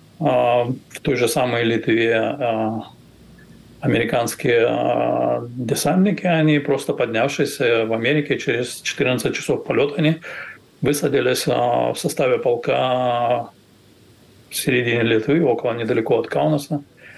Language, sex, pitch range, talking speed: Russian, male, 120-145 Hz, 100 wpm